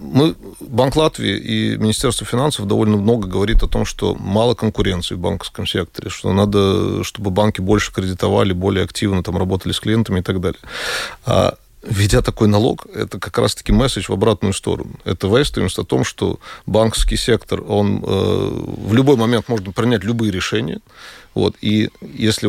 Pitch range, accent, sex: 100-115 Hz, native, male